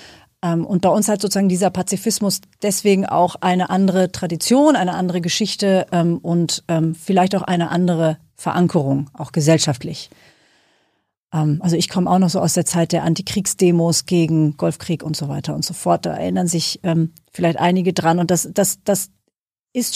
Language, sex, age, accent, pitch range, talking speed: German, female, 40-59, German, 165-205 Hz, 170 wpm